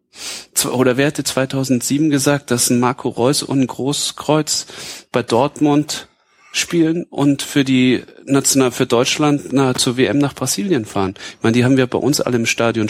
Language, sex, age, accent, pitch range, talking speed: German, male, 40-59, German, 120-145 Hz, 160 wpm